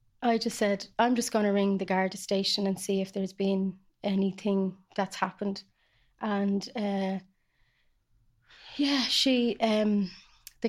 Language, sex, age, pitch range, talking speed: English, female, 30-49, 195-225 Hz, 140 wpm